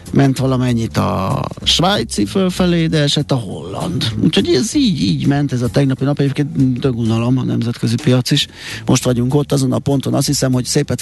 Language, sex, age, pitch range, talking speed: Hungarian, male, 30-49, 115-140 Hz, 180 wpm